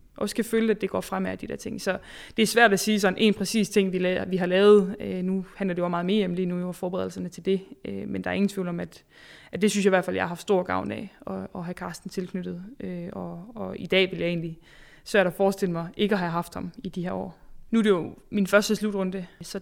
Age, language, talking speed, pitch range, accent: 20-39, Danish, 290 wpm, 180-205 Hz, native